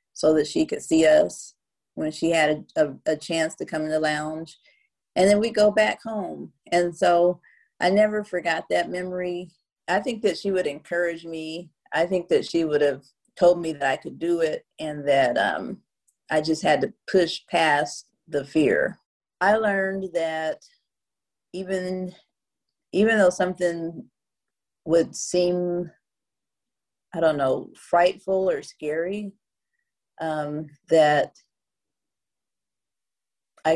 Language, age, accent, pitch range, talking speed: English, 40-59, American, 155-185 Hz, 140 wpm